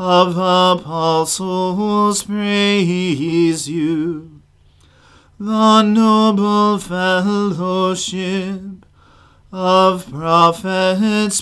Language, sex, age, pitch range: English, male, 40-59, 160-205 Hz